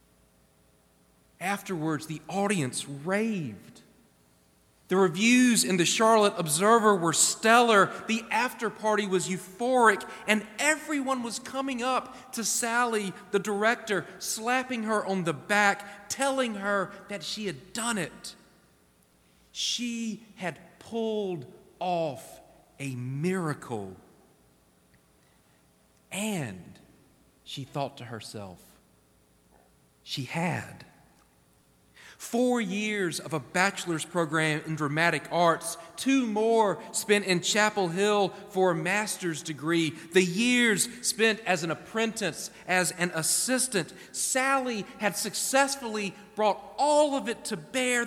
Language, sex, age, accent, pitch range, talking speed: English, male, 40-59, American, 160-220 Hz, 110 wpm